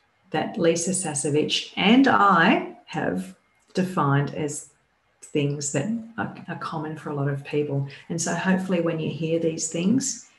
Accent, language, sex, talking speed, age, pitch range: Australian, English, female, 145 wpm, 40-59, 145-185 Hz